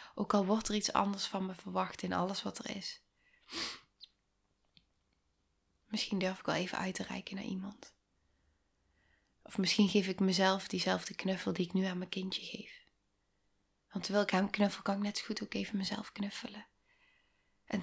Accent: Dutch